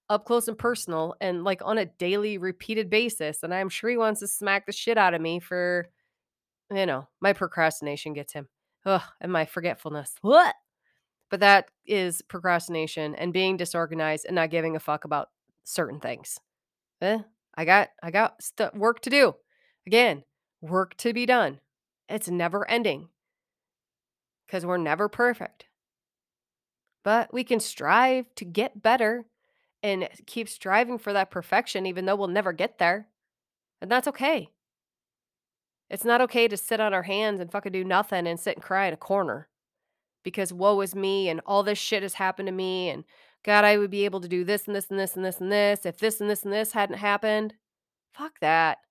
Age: 30-49